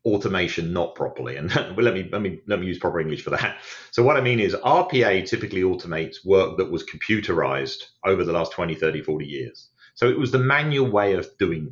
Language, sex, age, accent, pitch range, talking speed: English, male, 40-59, British, 80-120 Hz, 215 wpm